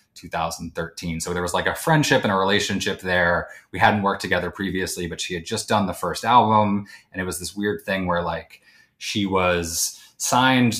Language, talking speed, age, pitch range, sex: English, 195 wpm, 30-49, 85-95 Hz, male